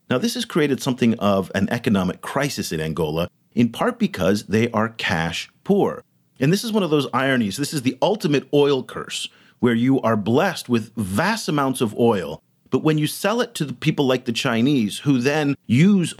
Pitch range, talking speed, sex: 105-160 Hz, 195 wpm, male